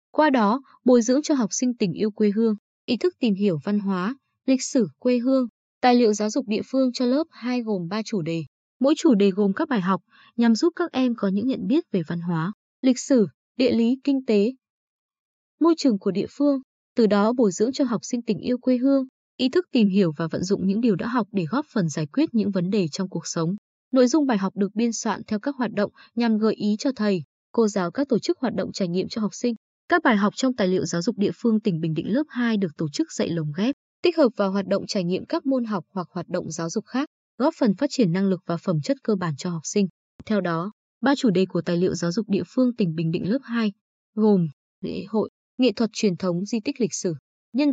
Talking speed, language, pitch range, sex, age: 255 wpm, Vietnamese, 195-255 Hz, female, 20-39